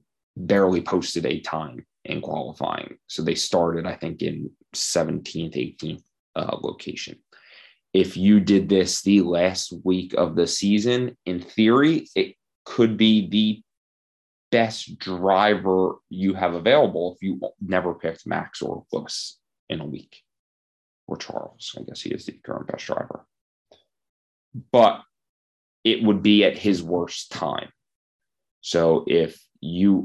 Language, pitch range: English, 85-105 Hz